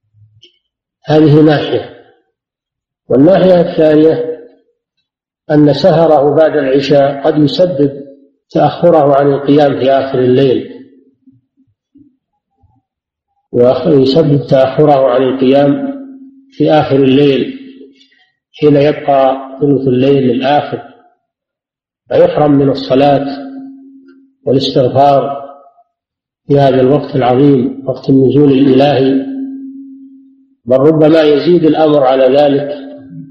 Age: 50-69